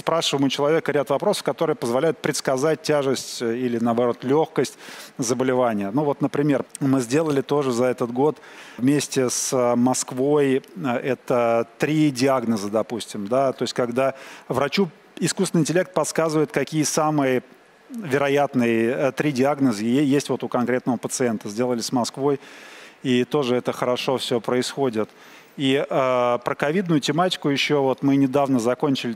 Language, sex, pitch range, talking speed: Russian, male, 125-150 Hz, 135 wpm